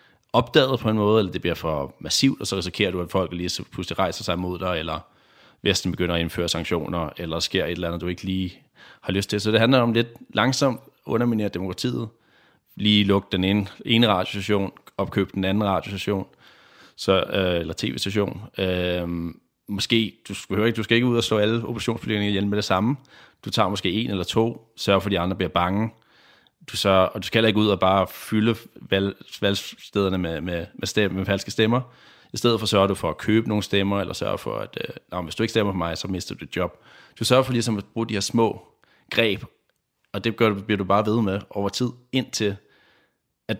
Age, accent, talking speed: 30-49, native, 220 wpm